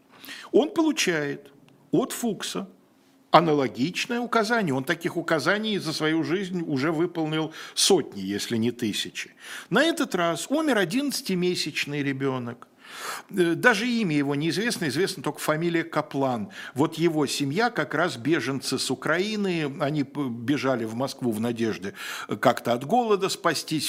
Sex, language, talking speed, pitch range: male, Russian, 125 wpm, 135-220 Hz